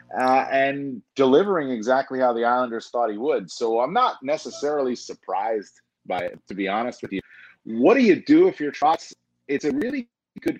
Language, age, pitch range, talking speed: English, 30-49, 100-145 Hz, 185 wpm